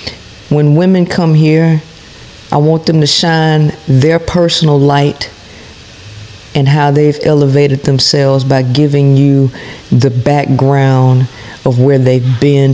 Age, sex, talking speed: 40-59, female, 120 wpm